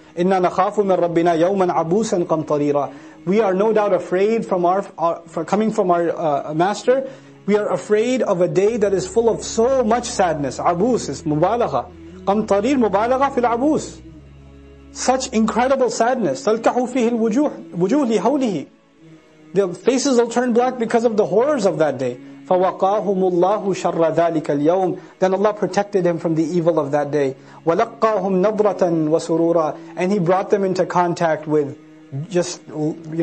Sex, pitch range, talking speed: male, 160-215 Hz, 120 wpm